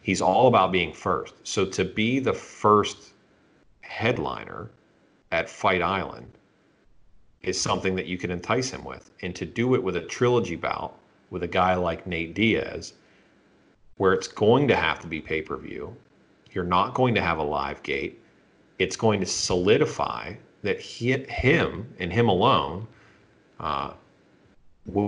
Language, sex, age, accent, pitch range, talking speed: English, male, 40-59, American, 85-100 Hz, 150 wpm